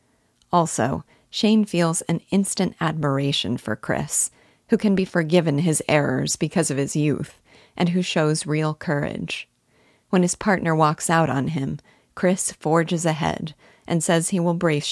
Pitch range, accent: 150-175 Hz, American